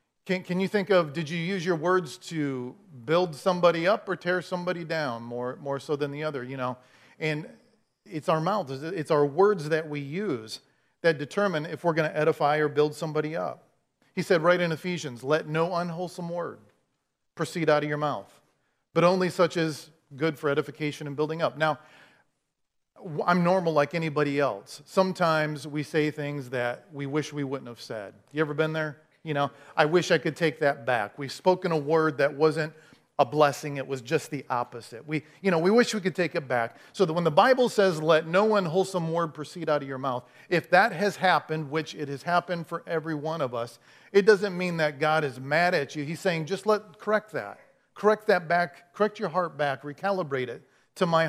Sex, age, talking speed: male, 40-59, 210 wpm